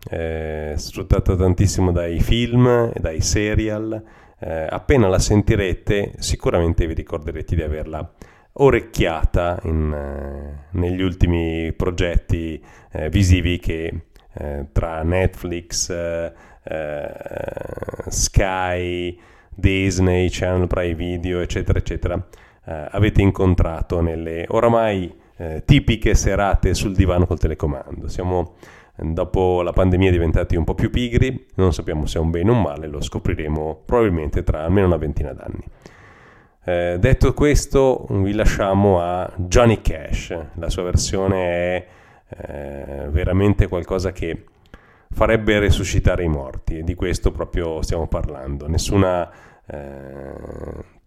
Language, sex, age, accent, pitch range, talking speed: Italian, male, 40-59, native, 80-100 Hz, 120 wpm